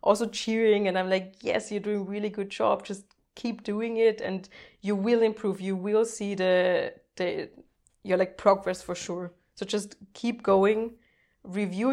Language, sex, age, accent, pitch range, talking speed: English, female, 20-39, German, 185-215 Hz, 175 wpm